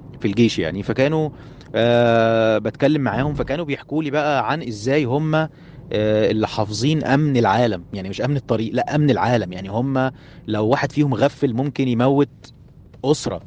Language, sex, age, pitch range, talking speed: Arabic, male, 30-49, 110-140 Hz, 155 wpm